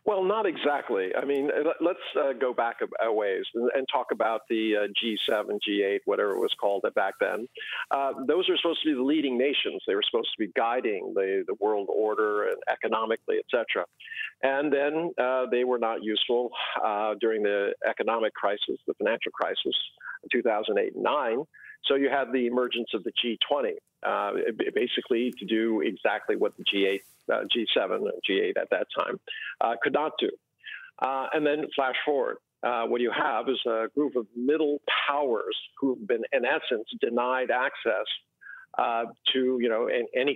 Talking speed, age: 175 wpm, 50-69